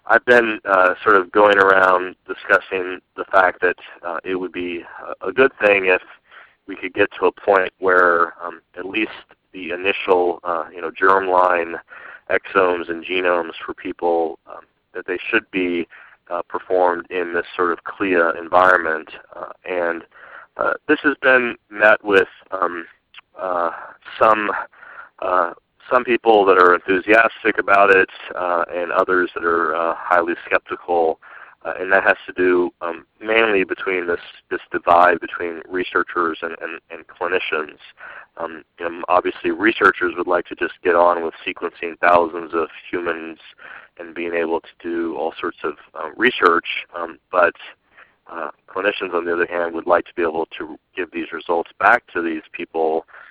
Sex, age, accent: male, 30-49, American